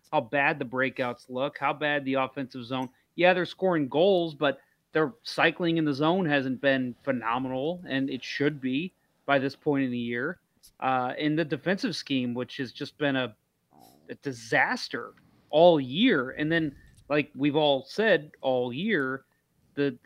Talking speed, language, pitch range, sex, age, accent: 170 wpm, English, 135-175 Hz, male, 30-49, American